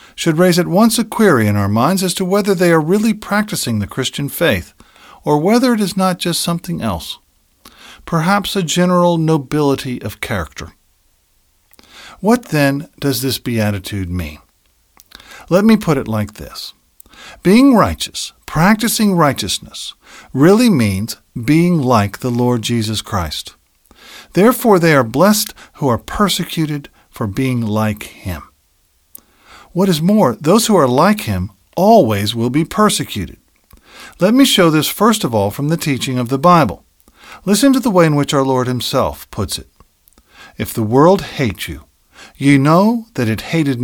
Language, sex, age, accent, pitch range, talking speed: English, male, 50-69, American, 110-180 Hz, 155 wpm